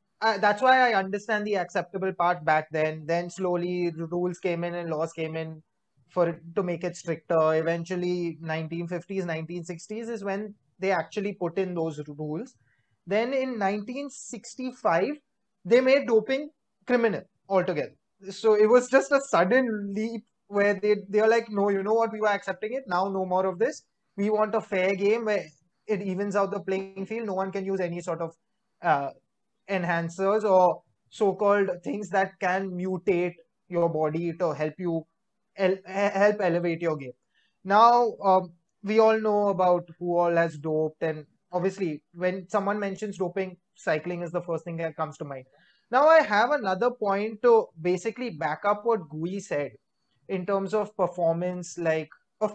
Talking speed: 170 wpm